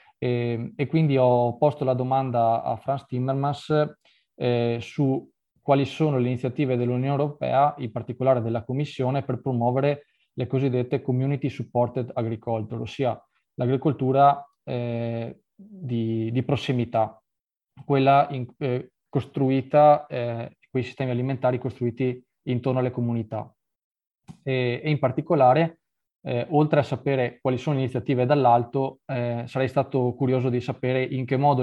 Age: 20-39